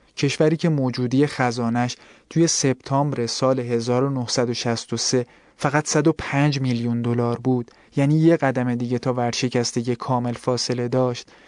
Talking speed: 115 wpm